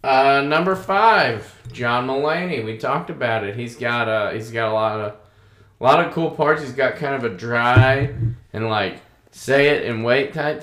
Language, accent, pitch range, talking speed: English, American, 120-140 Hz, 200 wpm